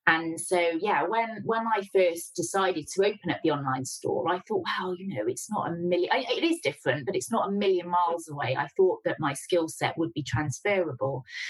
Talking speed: 220 wpm